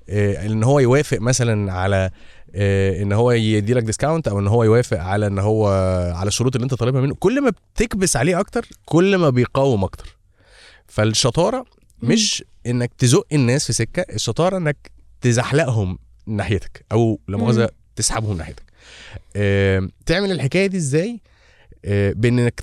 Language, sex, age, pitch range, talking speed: Arabic, male, 20-39, 100-145 Hz, 135 wpm